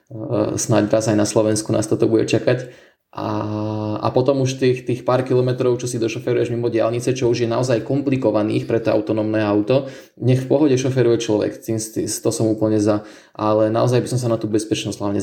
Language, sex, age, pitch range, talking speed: Slovak, male, 20-39, 105-125 Hz, 195 wpm